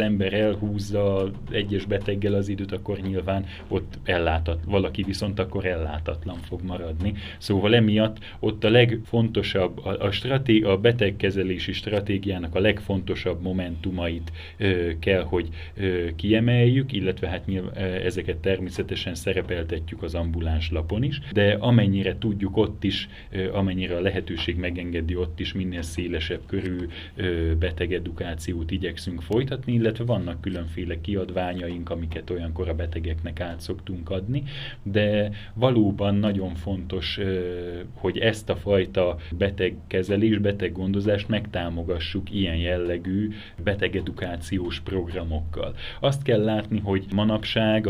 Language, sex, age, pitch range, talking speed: Hungarian, male, 30-49, 90-105 Hz, 115 wpm